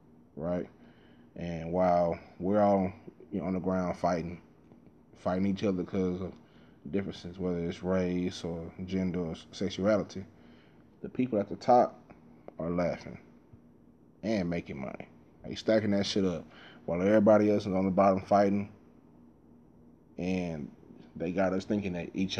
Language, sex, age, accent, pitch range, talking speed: English, male, 20-39, American, 80-95 Hz, 145 wpm